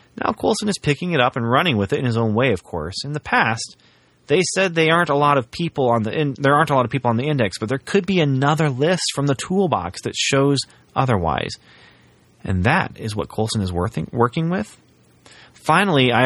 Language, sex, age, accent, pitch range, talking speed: English, male, 30-49, American, 100-140 Hz, 225 wpm